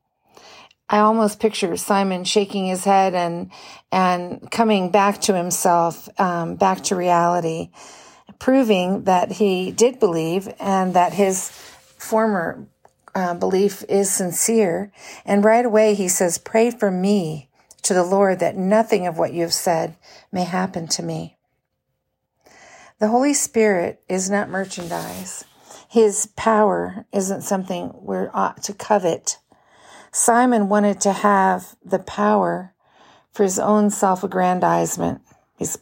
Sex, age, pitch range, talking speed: female, 50-69, 180-215 Hz, 130 wpm